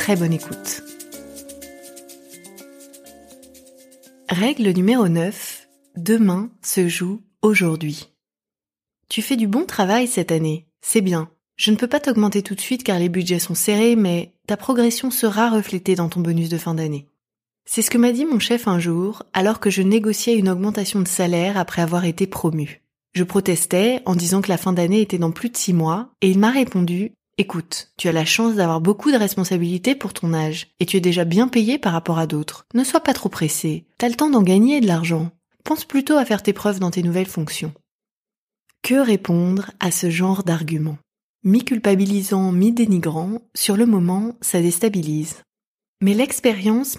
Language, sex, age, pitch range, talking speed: French, female, 20-39, 170-225 Hz, 180 wpm